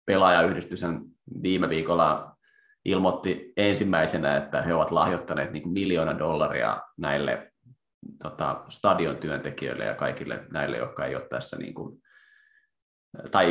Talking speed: 115 wpm